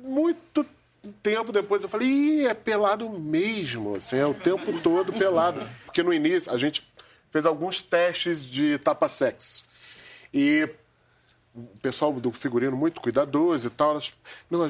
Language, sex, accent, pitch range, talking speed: Portuguese, male, Brazilian, 155-255 Hz, 135 wpm